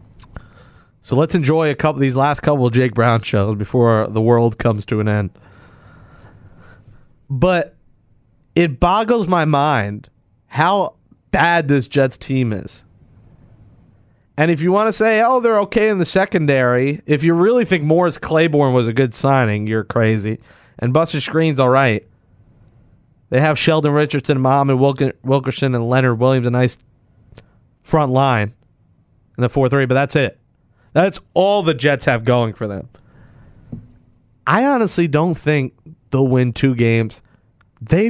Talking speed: 155 wpm